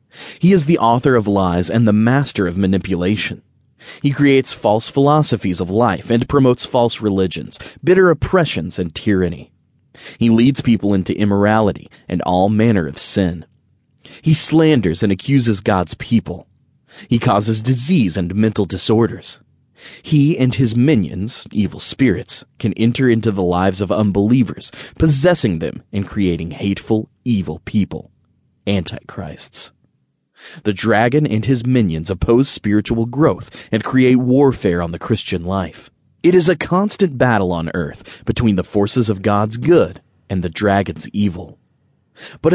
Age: 30-49